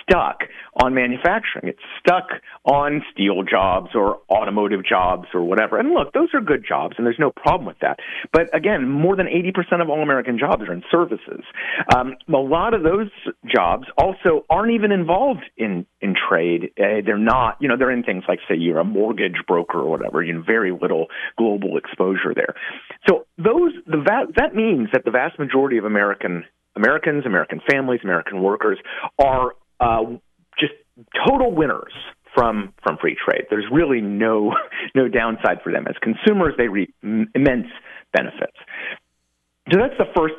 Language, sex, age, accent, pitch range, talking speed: English, male, 40-59, American, 115-170 Hz, 175 wpm